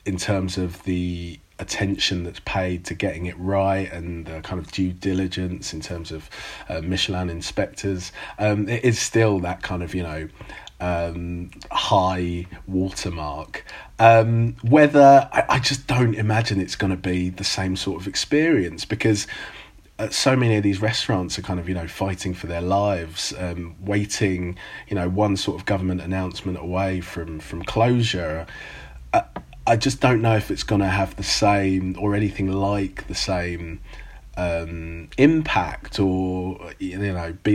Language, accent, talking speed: English, British, 165 wpm